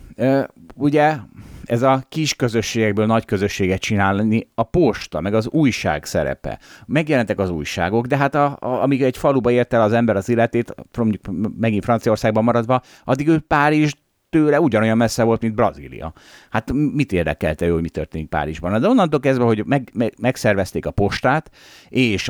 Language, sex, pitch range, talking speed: Hungarian, male, 90-135 Hz, 155 wpm